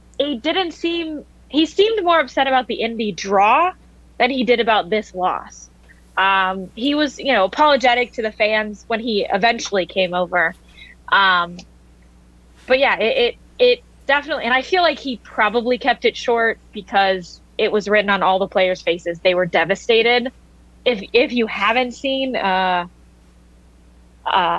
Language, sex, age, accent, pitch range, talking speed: English, female, 20-39, American, 185-245 Hz, 160 wpm